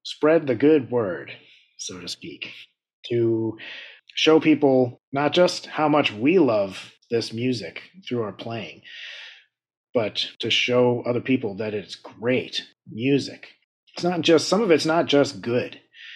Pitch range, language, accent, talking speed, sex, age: 105-145 Hz, English, American, 145 wpm, male, 30-49